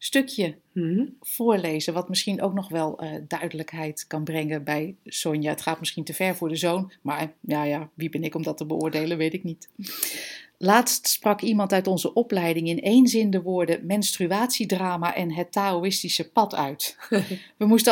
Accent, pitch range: Dutch, 160-200 Hz